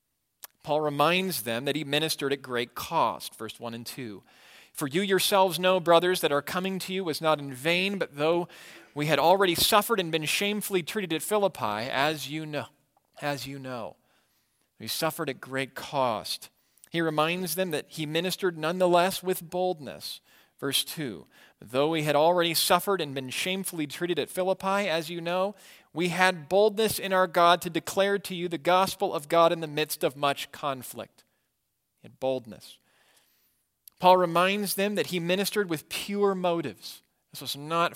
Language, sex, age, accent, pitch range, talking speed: English, male, 40-59, American, 150-195 Hz, 170 wpm